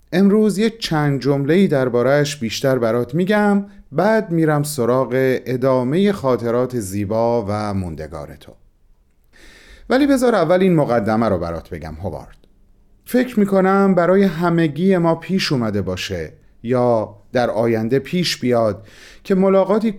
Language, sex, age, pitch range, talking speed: Persian, male, 30-49, 115-185 Hz, 125 wpm